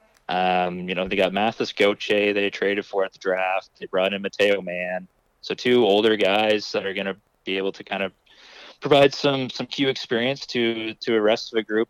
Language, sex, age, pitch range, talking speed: English, male, 20-39, 95-110 Hz, 215 wpm